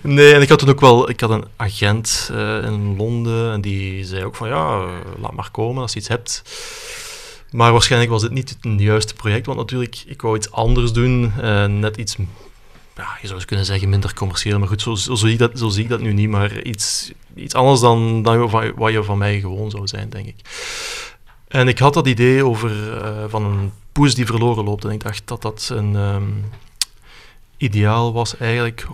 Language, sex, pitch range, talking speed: Dutch, male, 105-120 Hz, 220 wpm